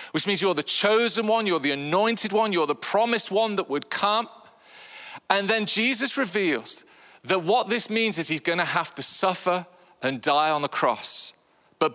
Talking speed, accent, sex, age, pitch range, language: 185 wpm, British, male, 40-59, 165-225 Hz, English